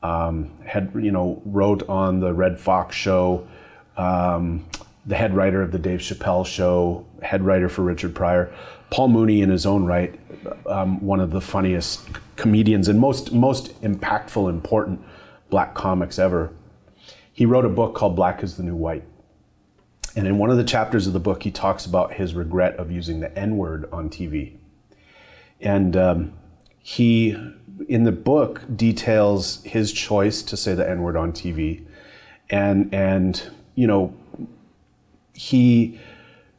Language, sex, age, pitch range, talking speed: English, male, 30-49, 90-110 Hz, 155 wpm